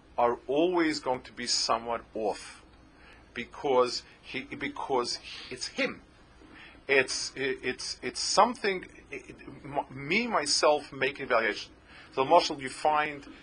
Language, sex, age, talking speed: English, male, 40-59, 135 wpm